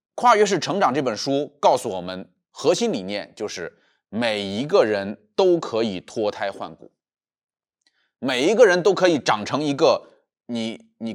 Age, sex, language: 30-49, male, Chinese